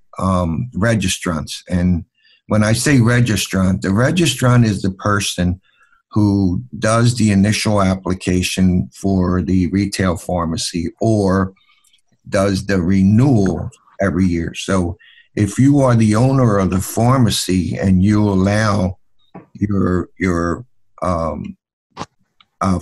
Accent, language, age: American, English, 60-79